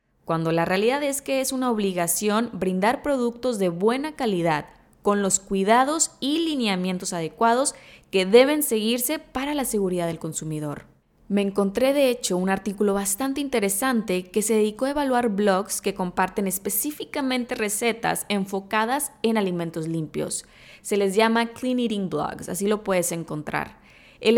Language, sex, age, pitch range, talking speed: Spanish, female, 20-39, 190-260 Hz, 150 wpm